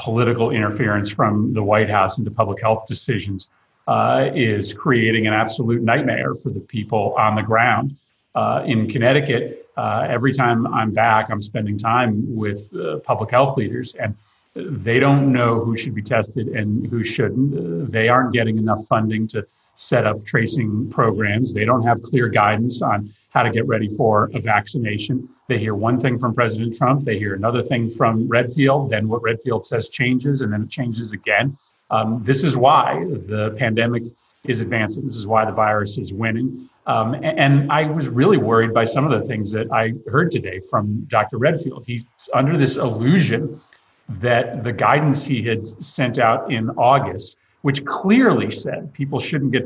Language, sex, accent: English, male, American